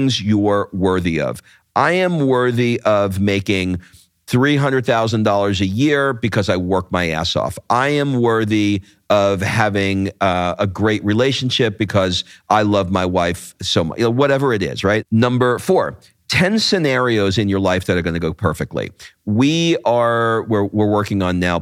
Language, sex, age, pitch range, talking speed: English, male, 40-59, 95-125 Hz, 155 wpm